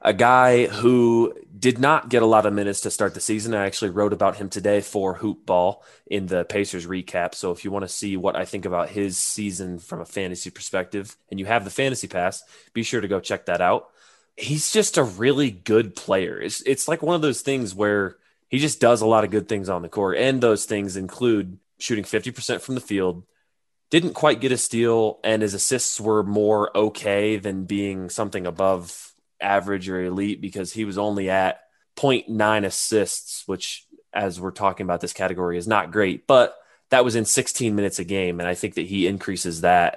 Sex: male